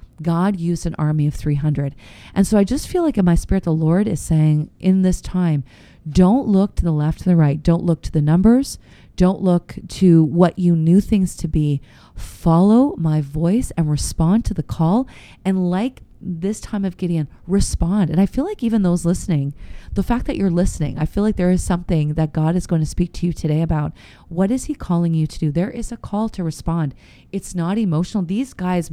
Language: English